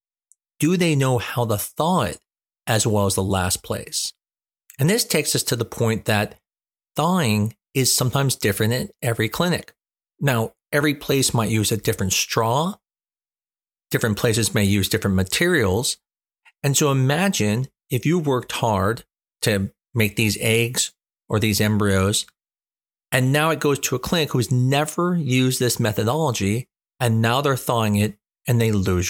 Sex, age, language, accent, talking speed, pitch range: male, 40-59, English, American, 160 wpm, 110-140 Hz